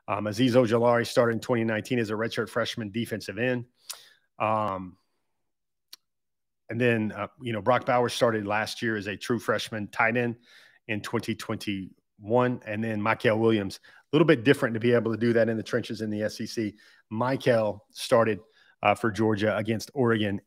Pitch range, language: 105-120 Hz, English